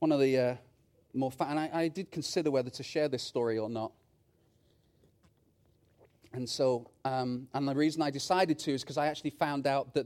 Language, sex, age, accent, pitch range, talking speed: English, male, 30-49, British, 145-200 Hz, 195 wpm